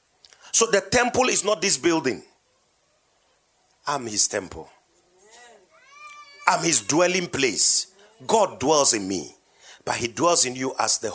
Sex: male